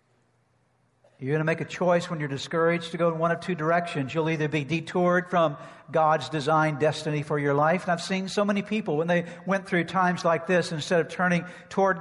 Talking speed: 220 wpm